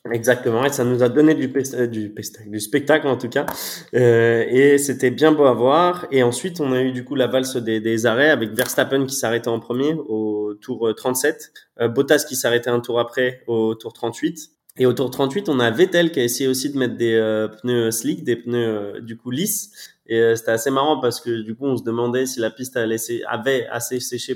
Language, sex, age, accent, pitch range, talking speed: French, male, 20-39, French, 120-140 Hz, 220 wpm